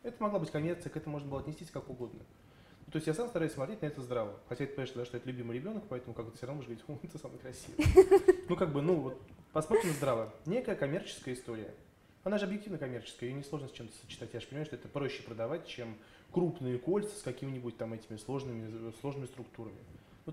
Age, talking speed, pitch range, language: 20-39, 230 wpm, 115-150 Hz, Russian